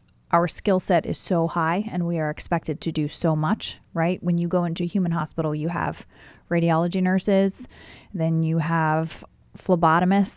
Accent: American